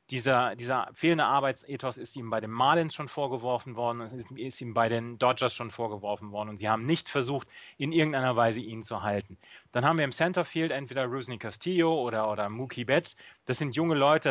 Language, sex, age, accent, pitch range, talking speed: German, male, 30-49, German, 120-150 Hz, 195 wpm